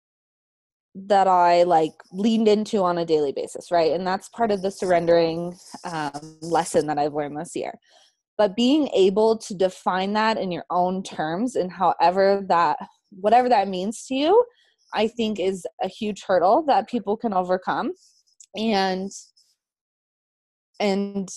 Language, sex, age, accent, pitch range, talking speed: English, female, 20-39, American, 175-220 Hz, 150 wpm